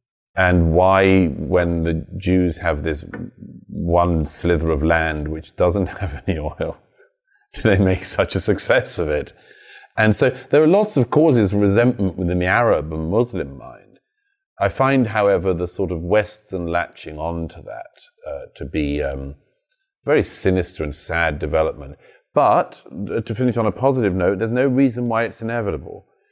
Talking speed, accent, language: 165 wpm, British, Hebrew